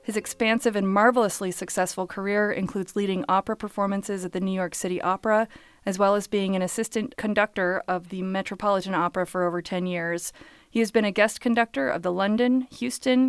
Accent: American